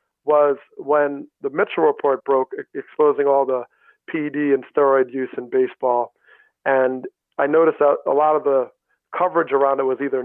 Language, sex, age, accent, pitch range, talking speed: English, male, 40-59, American, 130-160 Hz, 165 wpm